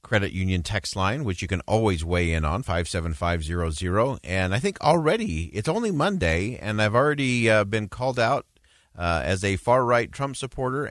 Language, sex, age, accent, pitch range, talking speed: English, male, 40-59, American, 90-120 Hz, 205 wpm